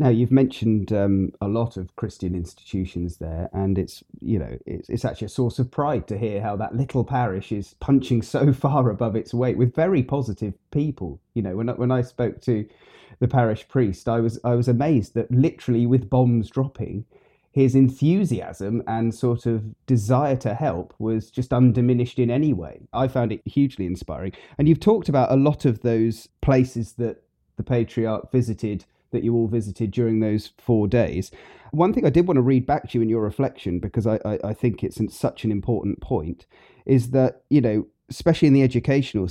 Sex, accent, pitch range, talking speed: male, British, 110-130 Hz, 195 wpm